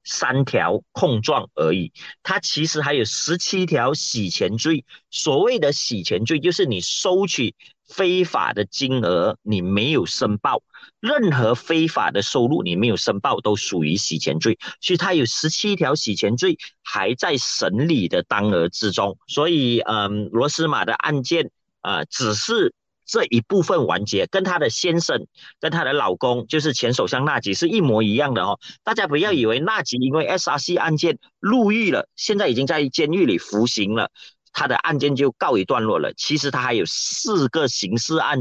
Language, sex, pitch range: Chinese, male, 115-160 Hz